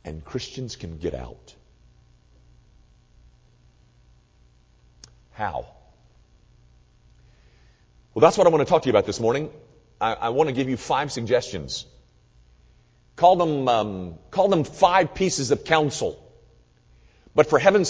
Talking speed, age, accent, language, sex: 125 wpm, 50-69, American, English, male